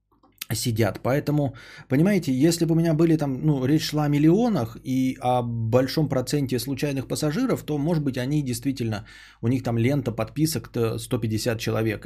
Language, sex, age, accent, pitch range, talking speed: Russian, male, 20-39, native, 110-145 Hz, 165 wpm